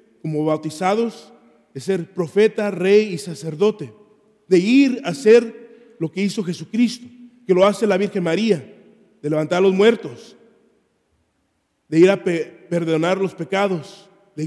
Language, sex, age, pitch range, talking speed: English, male, 40-59, 175-220 Hz, 135 wpm